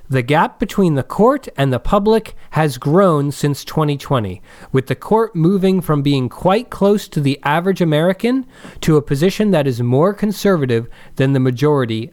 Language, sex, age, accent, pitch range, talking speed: English, male, 40-59, American, 125-185 Hz, 170 wpm